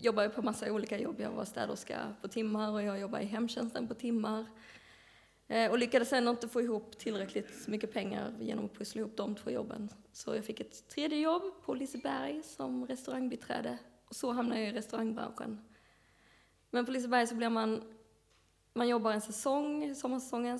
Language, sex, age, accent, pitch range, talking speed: Swedish, female, 20-39, native, 215-240 Hz, 185 wpm